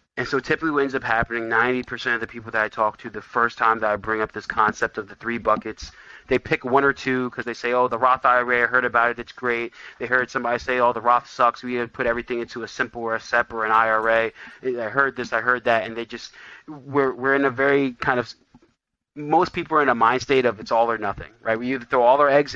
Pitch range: 110-130 Hz